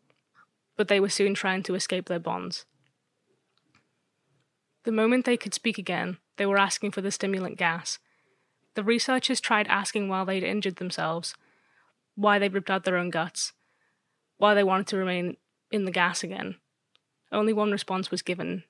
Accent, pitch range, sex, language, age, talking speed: British, 185-210 Hz, female, English, 20-39, 165 wpm